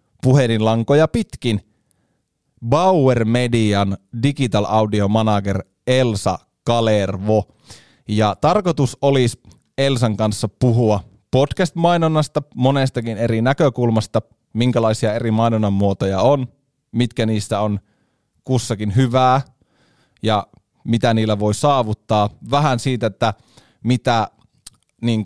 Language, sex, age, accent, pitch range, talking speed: Finnish, male, 30-49, native, 110-135 Hz, 90 wpm